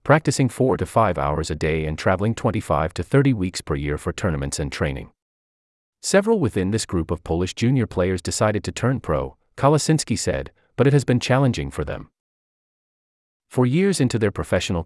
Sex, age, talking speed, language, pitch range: male, 30-49, 180 wpm, English, 75-120 Hz